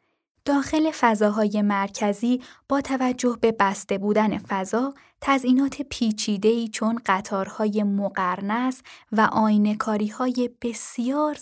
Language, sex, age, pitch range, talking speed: Persian, female, 10-29, 205-250 Hz, 95 wpm